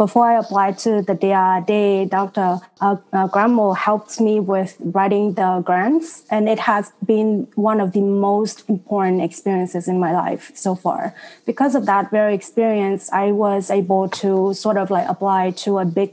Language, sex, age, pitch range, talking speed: English, female, 20-39, 190-225 Hz, 180 wpm